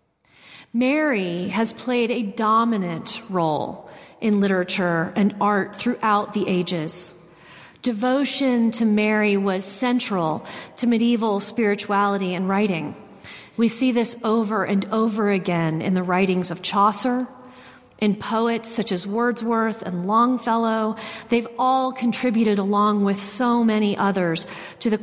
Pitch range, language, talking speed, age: 185-230 Hz, English, 125 wpm, 40-59